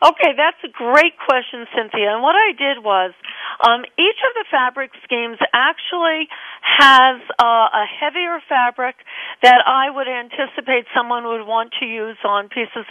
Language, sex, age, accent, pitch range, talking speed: English, female, 50-69, American, 220-275 Hz, 160 wpm